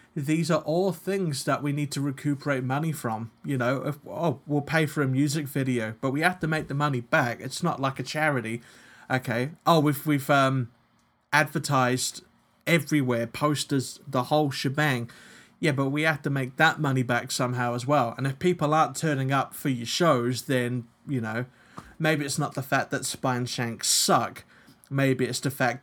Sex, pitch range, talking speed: male, 130-155 Hz, 190 wpm